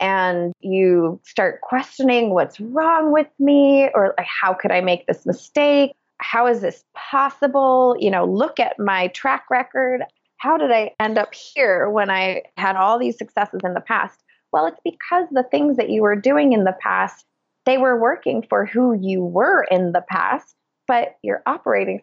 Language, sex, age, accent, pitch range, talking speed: English, female, 20-39, American, 185-260 Hz, 185 wpm